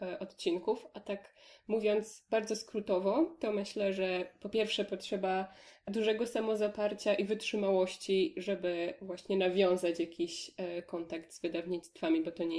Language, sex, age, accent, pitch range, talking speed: Polish, female, 20-39, native, 175-205 Hz, 125 wpm